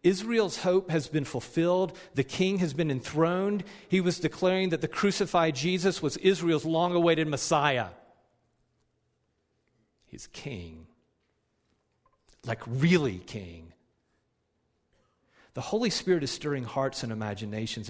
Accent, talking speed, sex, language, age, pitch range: American, 115 wpm, male, English, 40-59, 115-160 Hz